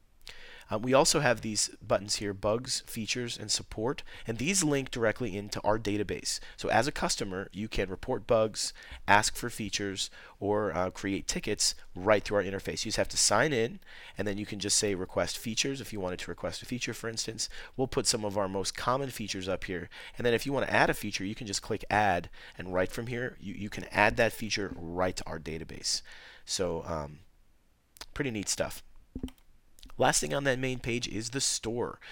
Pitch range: 95-115 Hz